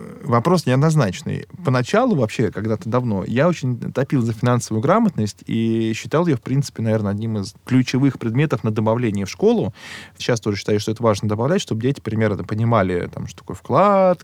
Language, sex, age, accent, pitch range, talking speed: Russian, male, 20-39, native, 105-135 Hz, 175 wpm